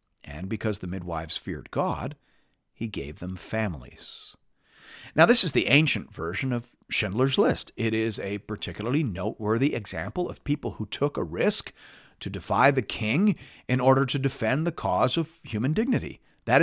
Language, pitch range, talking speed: English, 100-140 Hz, 160 wpm